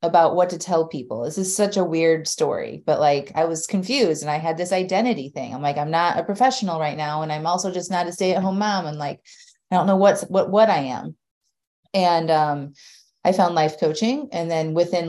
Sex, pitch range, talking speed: female, 150-190 Hz, 235 wpm